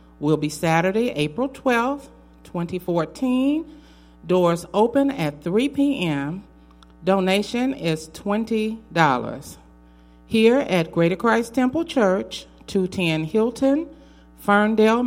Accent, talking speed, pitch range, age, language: American, 90 wpm, 140-215 Hz, 40-59, English